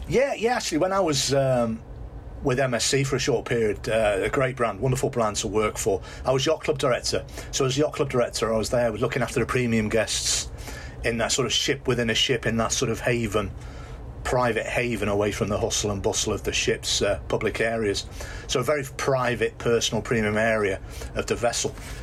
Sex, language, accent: male, English, British